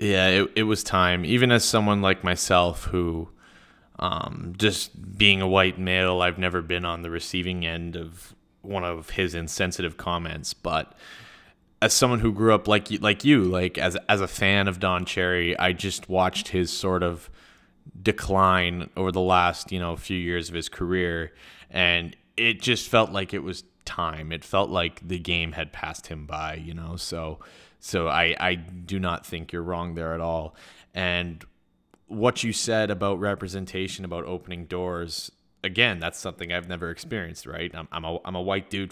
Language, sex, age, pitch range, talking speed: English, male, 20-39, 85-95 Hz, 180 wpm